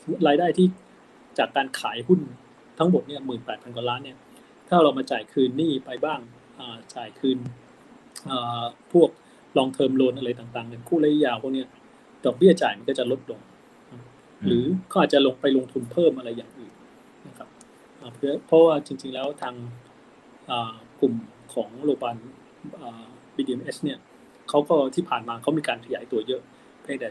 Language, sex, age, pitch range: Thai, male, 20-39, 120-150 Hz